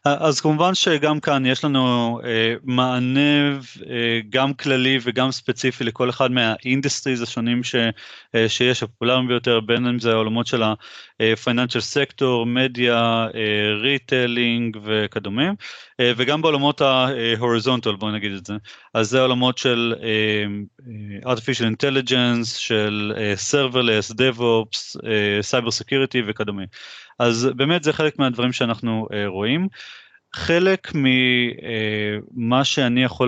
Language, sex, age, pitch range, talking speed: Hebrew, male, 30-49, 110-130 Hz, 120 wpm